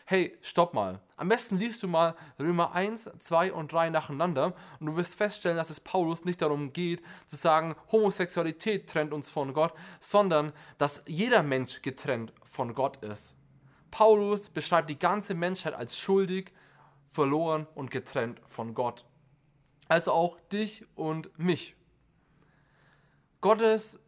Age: 20-39